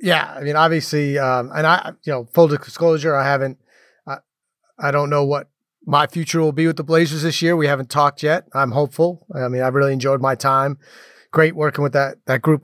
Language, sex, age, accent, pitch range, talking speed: English, male, 30-49, American, 135-165 Hz, 220 wpm